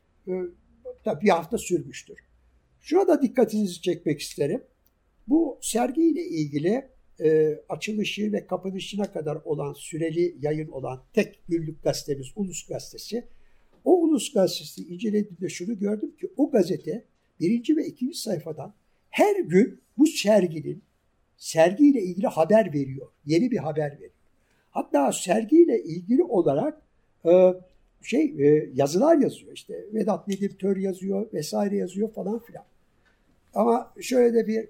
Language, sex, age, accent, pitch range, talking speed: Turkish, male, 60-79, native, 155-225 Hz, 120 wpm